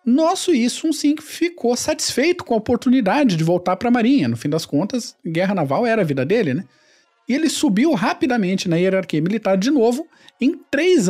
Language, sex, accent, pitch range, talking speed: Portuguese, male, Brazilian, 180-265 Hz, 190 wpm